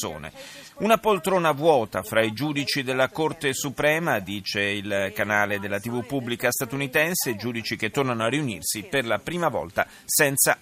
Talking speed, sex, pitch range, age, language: 145 wpm, male, 115-155 Hz, 30-49, Italian